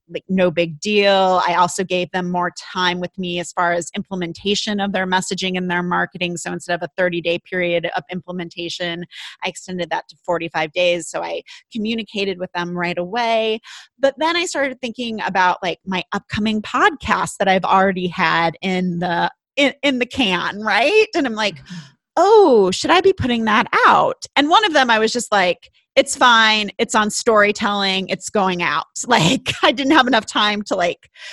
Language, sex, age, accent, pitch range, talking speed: English, female, 30-49, American, 180-235 Hz, 190 wpm